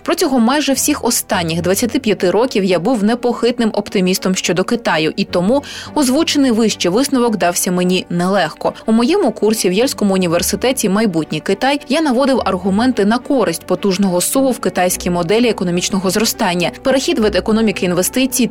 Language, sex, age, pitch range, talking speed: Ukrainian, female, 20-39, 190-255 Hz, 145 wpm